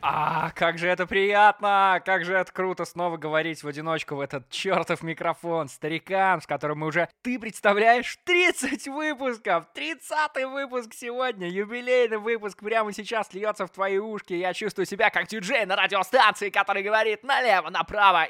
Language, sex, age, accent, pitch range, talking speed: Russian, male, 20-39, native, 140-205 Hz, 155 wpm